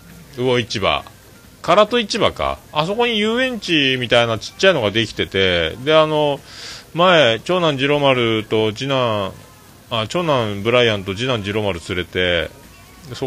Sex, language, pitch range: male, Japanese, 90-135 Hz